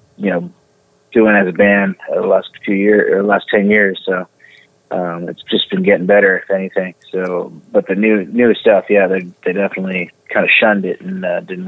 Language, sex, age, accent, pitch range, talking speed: English, male, 30-49, American, 95-120 Hz, 210 wpm